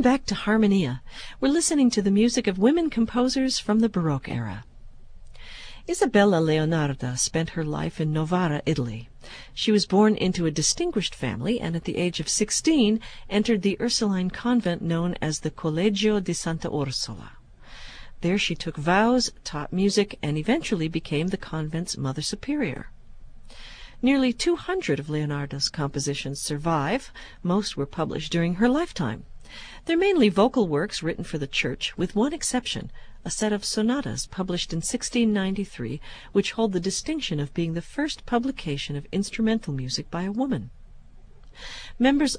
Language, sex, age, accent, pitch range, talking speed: English, female, 50-69, American, 155-225 Hz, 150 wpm